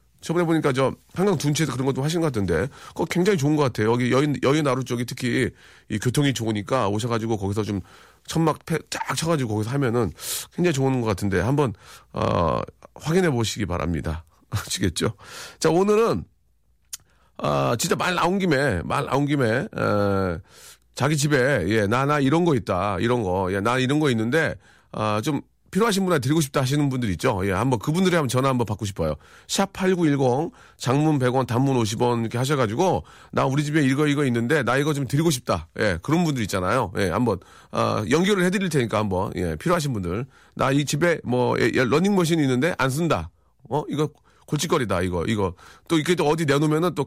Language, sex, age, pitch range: Korean, male, 40-59, 110-155 Hz